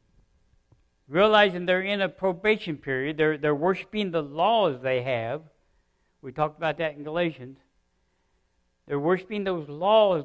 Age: 60-79